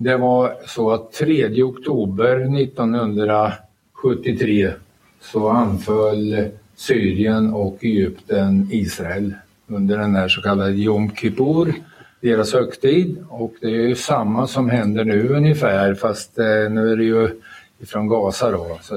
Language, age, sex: Swedish, 60-79, male